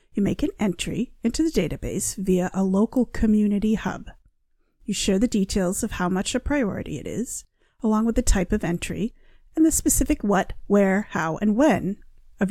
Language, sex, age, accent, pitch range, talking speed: English, female, 40-59, American, 190-245 Hz, 180 wpm